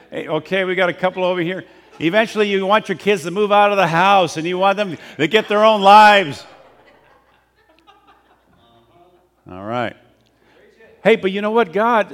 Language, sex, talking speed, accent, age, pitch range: English, male, 175 wpm, American, 50-69, 145-195 Hz